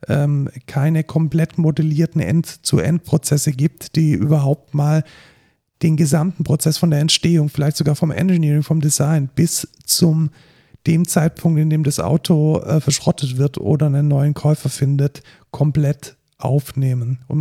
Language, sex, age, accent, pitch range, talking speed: German, male, 40-59, German, 140-155 Hz, 135 wpm